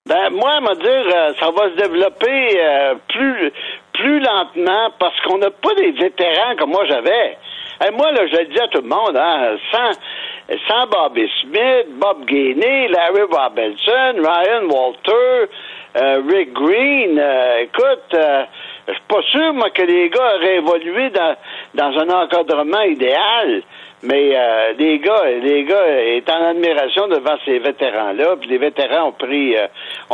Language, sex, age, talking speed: French, male, 60-79, 165 wpm